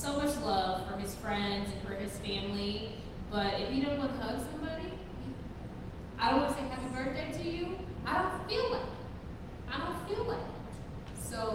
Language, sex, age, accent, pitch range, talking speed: English, female, 30-49, American, 195-260 Hz, 205 wpm